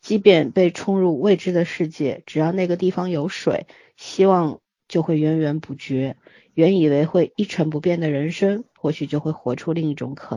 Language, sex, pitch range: Chinese, female, 150-200 Hz